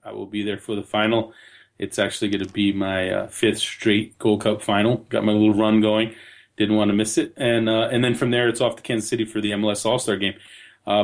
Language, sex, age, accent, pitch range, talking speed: English, male, 30-49, American, 105-140 Hz, 250 wpm